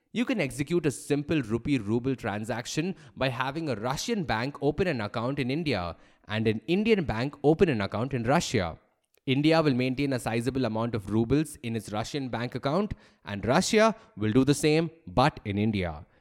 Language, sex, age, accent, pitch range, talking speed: English, male, 20-39, Indian, 120-160 Hz, 180 wpm